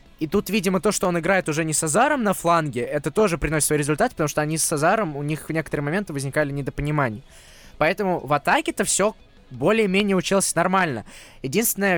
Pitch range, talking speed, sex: 140-195 Hz, 190 wpm, male